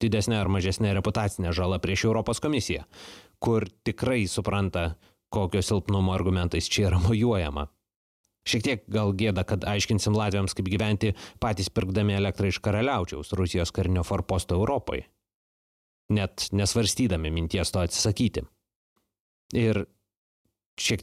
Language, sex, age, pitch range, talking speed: English, male, 30-49, 90-110 Hz, 120 wpm